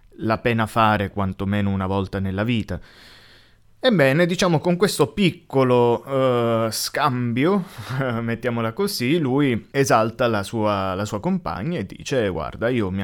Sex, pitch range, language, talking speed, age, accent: male, 100-130 Hz, Italian, 125 wpm, 20-39, native